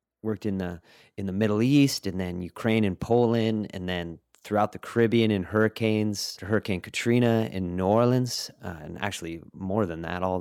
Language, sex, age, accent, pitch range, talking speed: English, male, 30-49, American, 90-115 Hz, 185 wpm